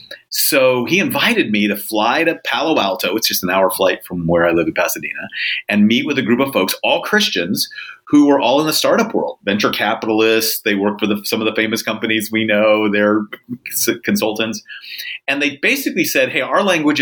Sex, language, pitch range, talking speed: male, English, 105-150 Hz, 205 wpm